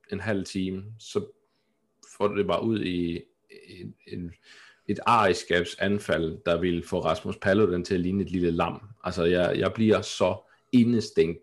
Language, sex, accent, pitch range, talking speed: Danish, male, native, 90-110 Hz, 165 wpm